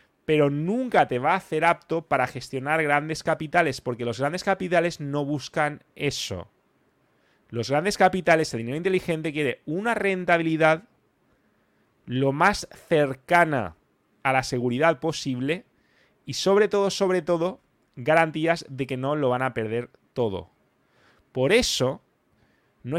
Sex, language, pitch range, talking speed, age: male, English, 135-175 Hz, 135 wpm, 20-39